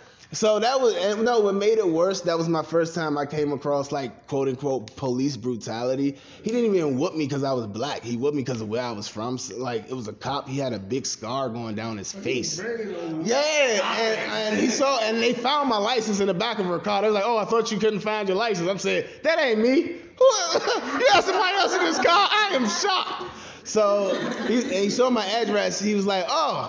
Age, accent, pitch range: 20-39, American, 140-215 Hz